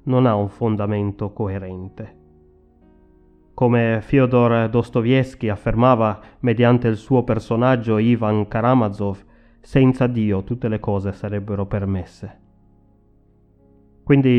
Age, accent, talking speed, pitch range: 30-49, native, 95 wpm, 105-130 Hz